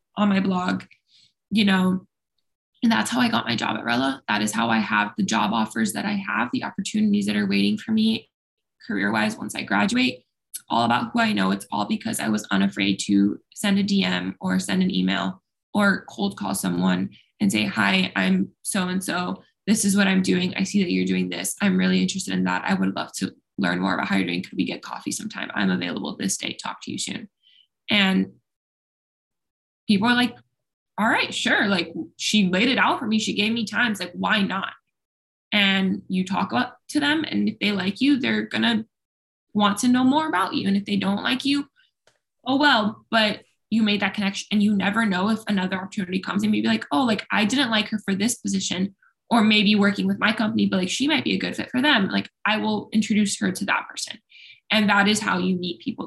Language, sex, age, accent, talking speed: English, female, 20-39, American, 220 wpm